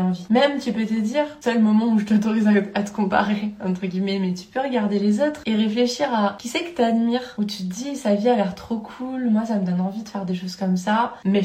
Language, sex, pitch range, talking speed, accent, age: French, female, 185-225 Hz, 275 wpm, French, 20-39